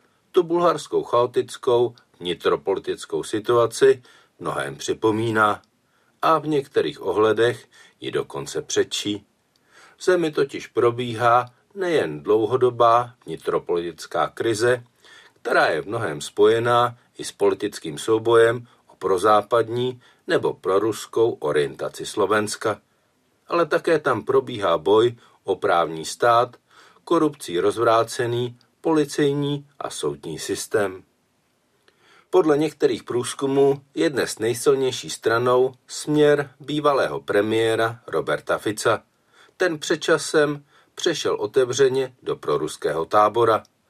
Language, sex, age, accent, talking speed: Czech, male, 50-69, native, 95 wpm